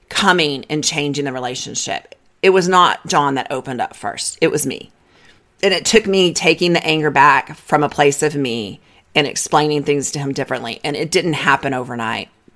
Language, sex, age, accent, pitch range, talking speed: English, female, 40-59, American, 140-180 Hz, 190 wpm